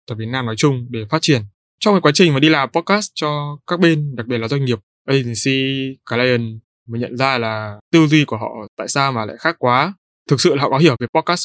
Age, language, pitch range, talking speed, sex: 20-39, Vietnamese, 120-155 Hz, 250 wpm, male